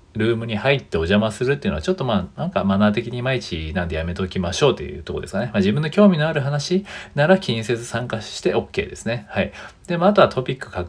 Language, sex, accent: Japanese, male, native